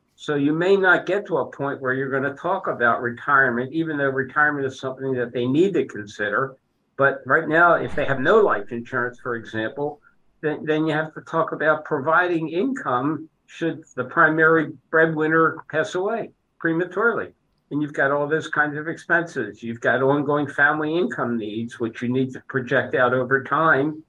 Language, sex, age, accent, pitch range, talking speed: English, male, 60-79, American, 125-155 Hz, 185 wpm